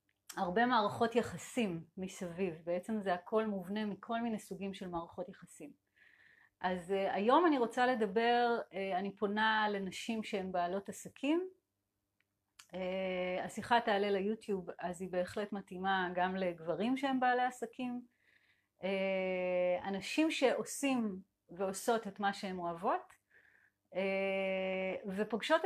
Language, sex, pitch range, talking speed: Hebrew, female, 185-235 Hz, 105 wpm